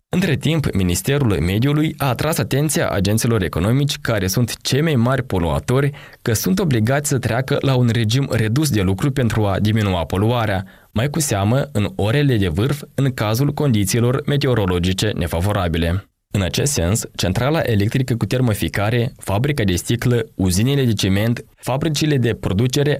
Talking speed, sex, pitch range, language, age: 150 wpm, male, 100-135 Hz, Romanian, 20-39